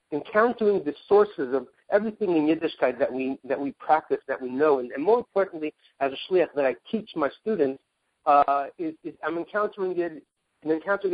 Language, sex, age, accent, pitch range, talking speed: English, male, 50-69, American, 150-195 Hz, 190 wpm